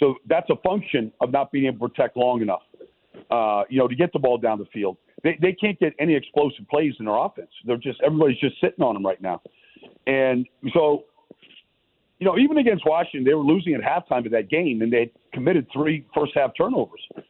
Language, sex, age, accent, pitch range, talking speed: English, male, 50-69, American, 120-150 Hz, 220 wpm